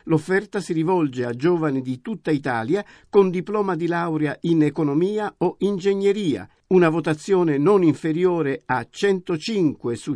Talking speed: 135 wpm